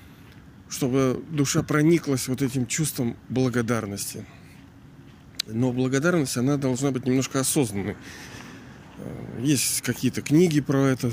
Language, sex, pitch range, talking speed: Russian, male, 125-155 Hz, 100 wpm